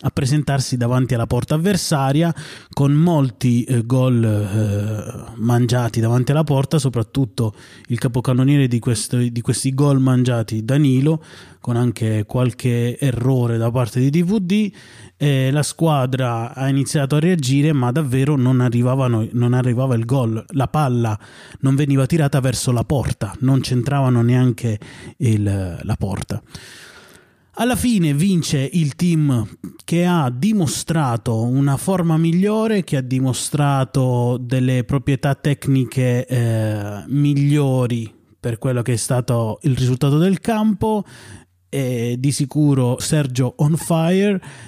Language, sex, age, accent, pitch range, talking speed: Italian, male, 20-39, native, 120-145 Hz, 120 wpm